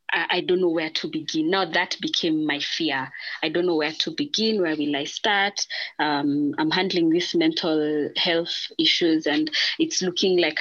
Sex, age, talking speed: female, 20-39, 180 wpm